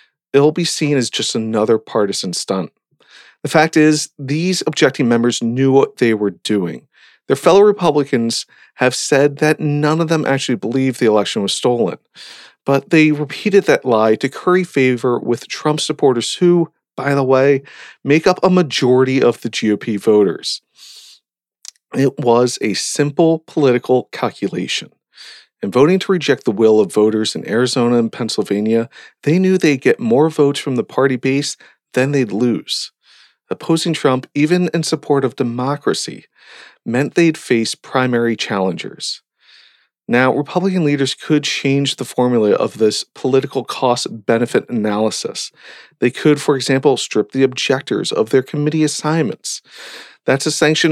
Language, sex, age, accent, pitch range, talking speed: English, male, 40-59, American, 120-155 Hz, 150 wpm